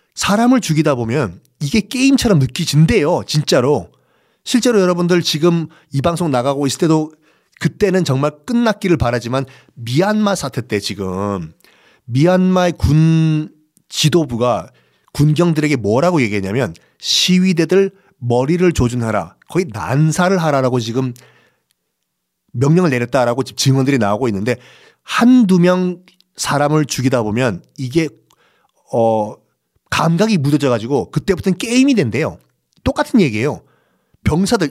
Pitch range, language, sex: 125-180 Hz, Korean, male